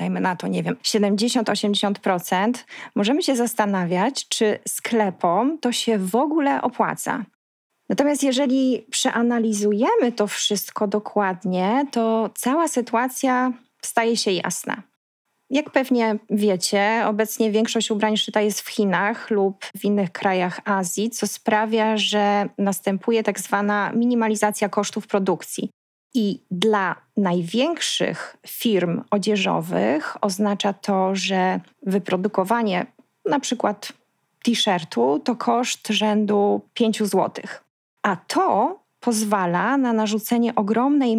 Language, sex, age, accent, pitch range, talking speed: Polish, female, 20-39, native, 195-235 Hz, 110 wpm